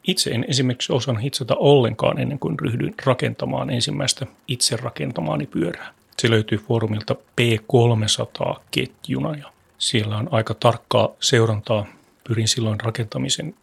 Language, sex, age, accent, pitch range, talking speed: Finnish, male, 30-49, native, 115-140 Hz, 120 wpm